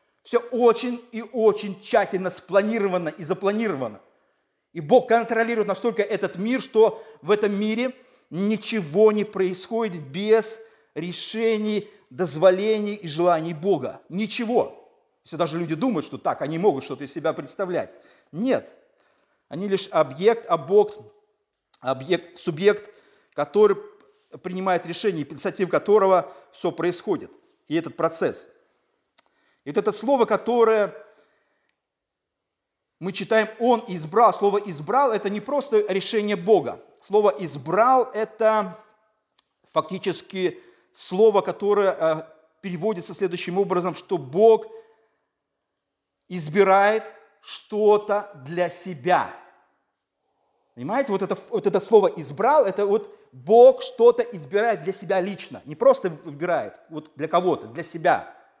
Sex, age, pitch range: male, 50-69, 180-225 Hz